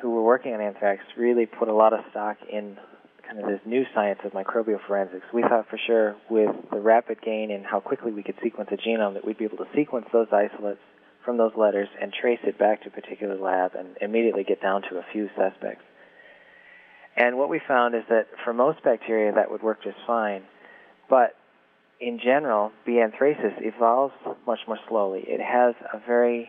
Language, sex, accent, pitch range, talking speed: English, male, American, 105-120 Hz, 205 wpm